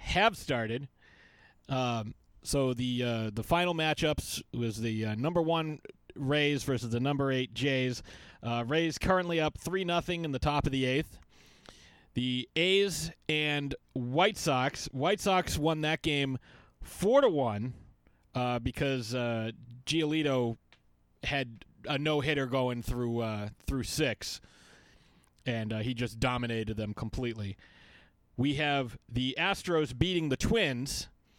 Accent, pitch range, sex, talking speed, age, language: American, 120-155 Hz, male, 140 wpm, 30-49, English